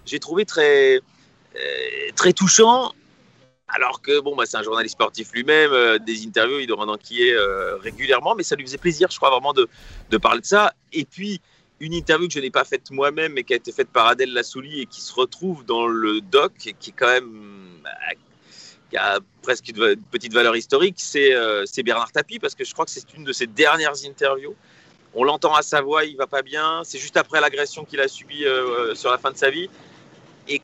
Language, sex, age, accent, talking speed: French, male, 30-49, French, 225 wpm